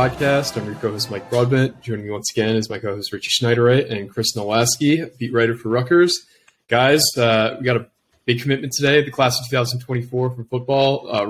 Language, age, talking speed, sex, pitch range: English, 20-39, 195 wpm, male, 110-130 Hz